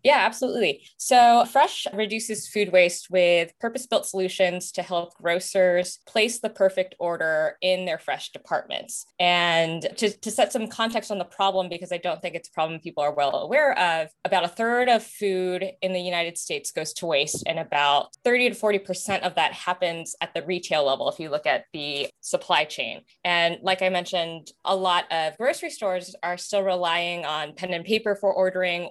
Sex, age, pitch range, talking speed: female, 20-39, 165-200 Hz, 190 wpm